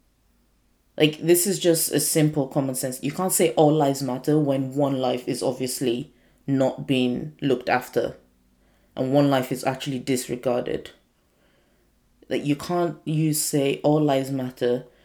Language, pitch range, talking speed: English, 130-150 Hz, 150 wpm